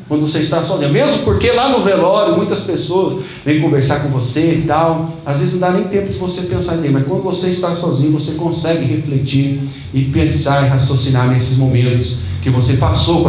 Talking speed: 210 wpm